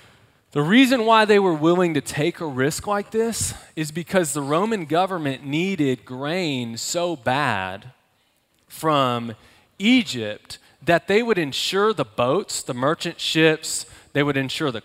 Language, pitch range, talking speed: English, 115-160 Hz, 145 wpm